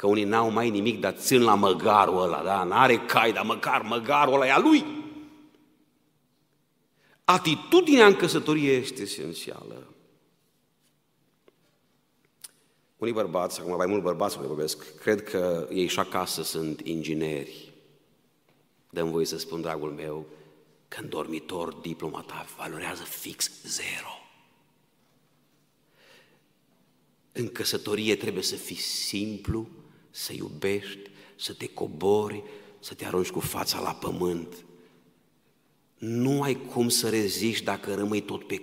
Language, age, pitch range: Romanian, 50-69, 90-140 Hz